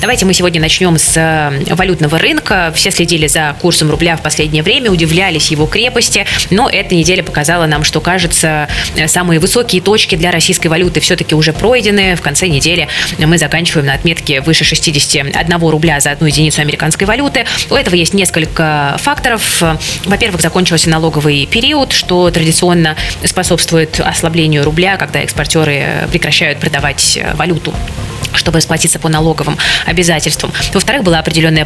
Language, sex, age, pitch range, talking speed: Russian, female, 20-39, 150-175 Hz, 145 wpm